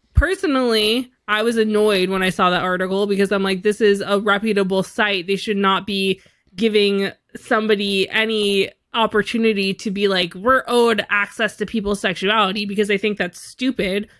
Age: 20-39